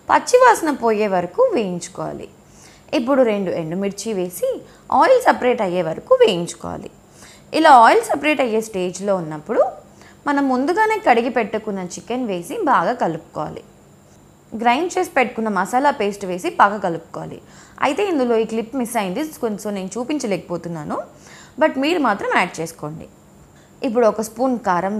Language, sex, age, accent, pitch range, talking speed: Telugu, female, 20-39, native, 195-280 Hz, 125 wpm